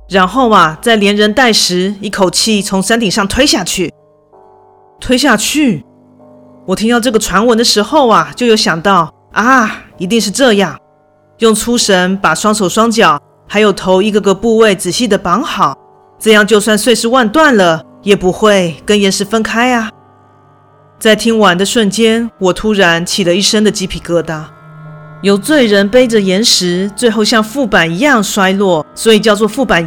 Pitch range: 180-225 Hz